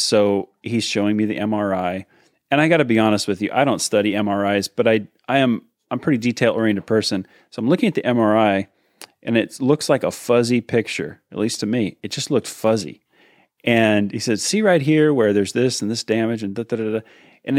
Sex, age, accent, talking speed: male, 30-49, American, 220 wpm